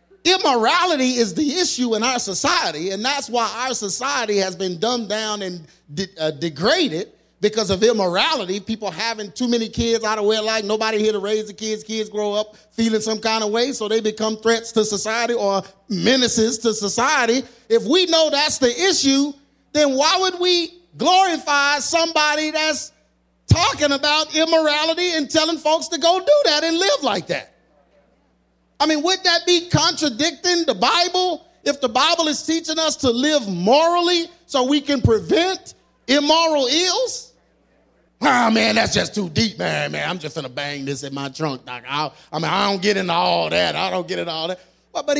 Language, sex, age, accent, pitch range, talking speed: English, male, 30-49, American, 215-315 Hz, 185 wpm